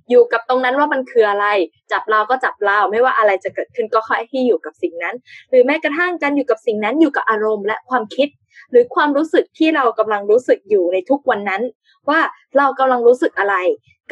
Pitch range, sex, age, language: 215-315 Hz, female, 10-29, Thai